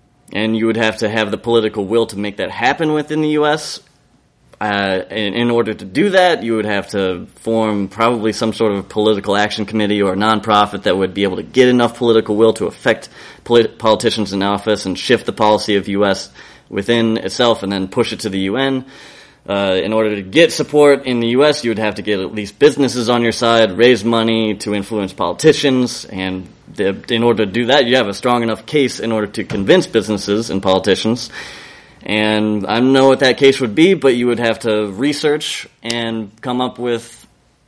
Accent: American